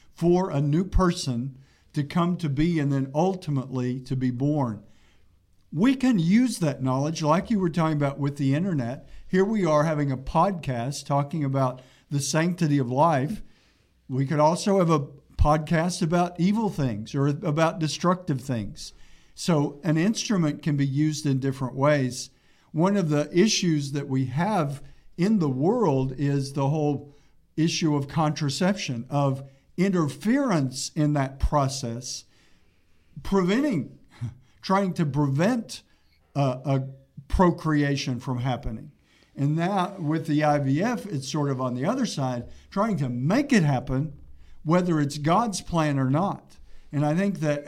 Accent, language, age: American, English, 50-69